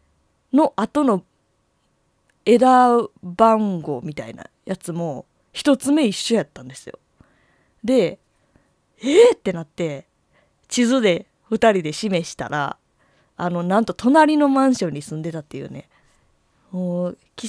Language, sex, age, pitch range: Japanese, female, 20-39, 165-225 Hz